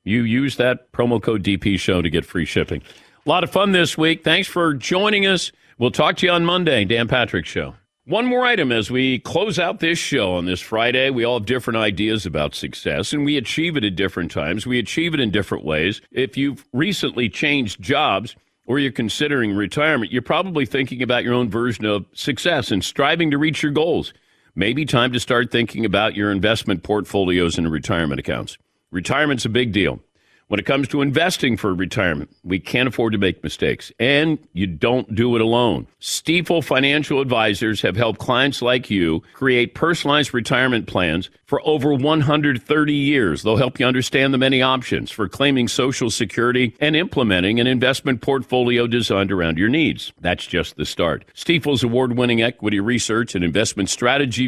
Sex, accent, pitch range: male, American, 105-145 Hz